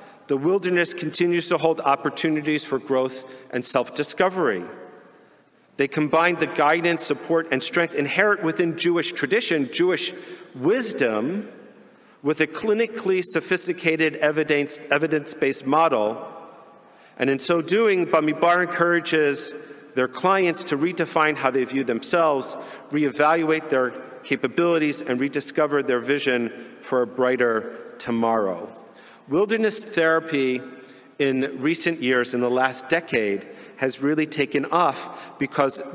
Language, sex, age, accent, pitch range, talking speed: English, male, 50-69, American, 130-165 Hz, 115 wpm